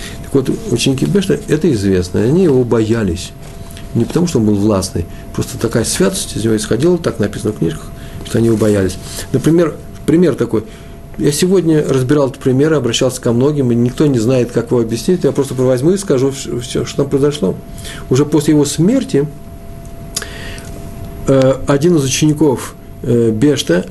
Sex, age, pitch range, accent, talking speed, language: male, 50-69, 100-150 Hz, native, 160 wpm, Russian